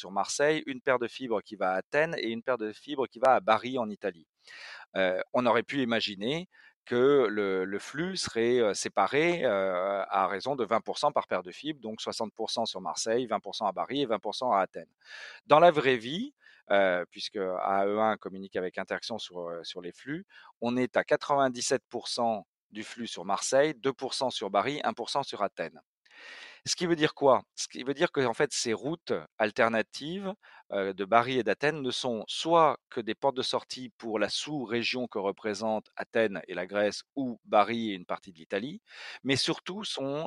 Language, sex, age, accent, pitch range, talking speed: French, male, 40-59, French, 105-150 Hz, 190 wpm